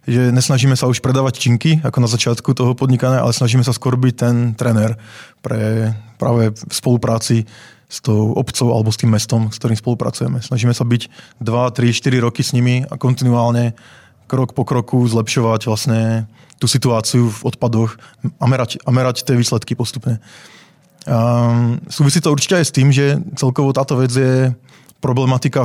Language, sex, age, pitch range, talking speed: Czech, male, 20-39, 115-130 Hz, 160 wpm